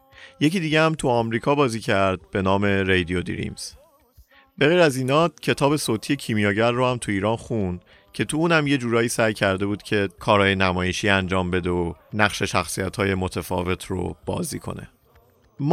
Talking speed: 165 wpm